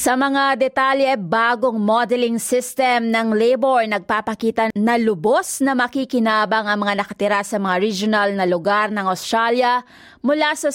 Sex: female